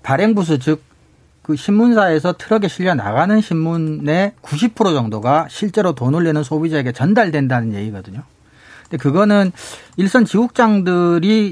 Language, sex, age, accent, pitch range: Korean, male, 40-59, native, 135-185 Hz